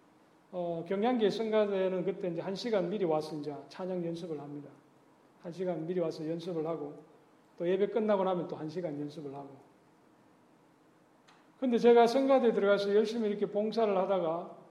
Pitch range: 180-240 Hz